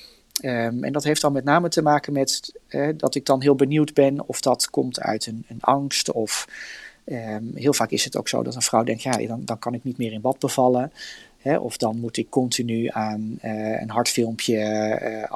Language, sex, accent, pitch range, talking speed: Dutch, male, Dutch, 115-145 Hz, 205 wpm